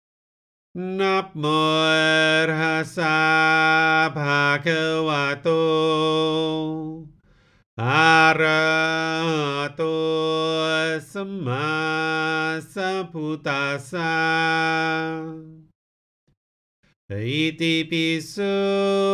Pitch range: 155-160 Hz